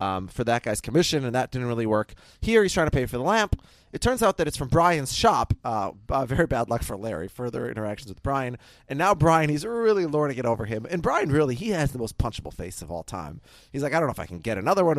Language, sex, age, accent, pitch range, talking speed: English, male, 30-49, American, 115-160 Hz, 275 wpm